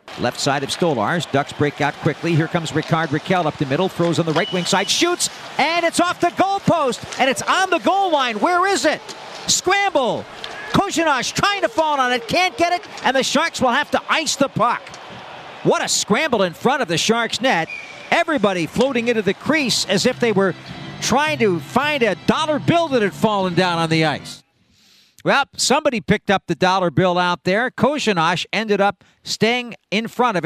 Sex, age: male, 50-69